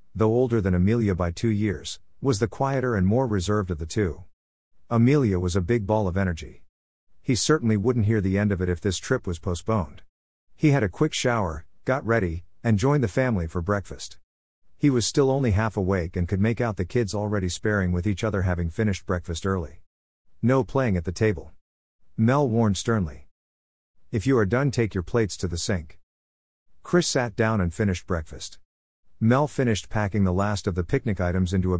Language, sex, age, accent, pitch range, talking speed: English, male, 50-69, American, 90-115 Hz, 200 wpm